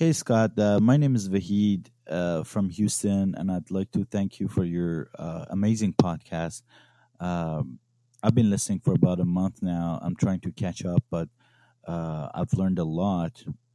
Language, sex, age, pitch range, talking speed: English, male, 30-49, 90-120 Hz, 180 wpm